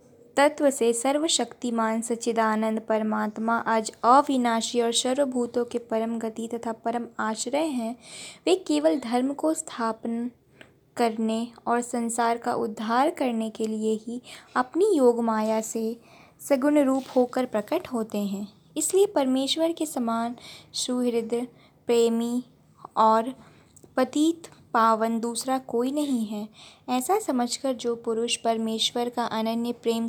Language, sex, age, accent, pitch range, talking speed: Hindi, female, 20-39, native, 225-270 Hz, 120 wpm